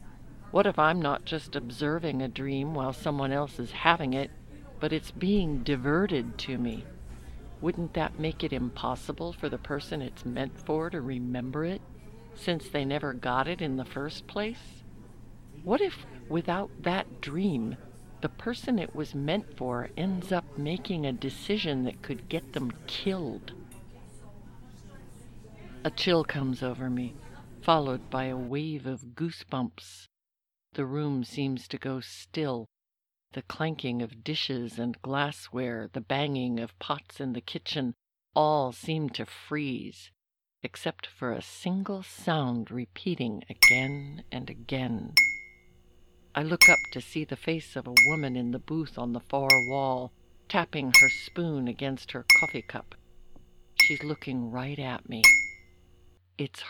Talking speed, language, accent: 145 wpm, English, American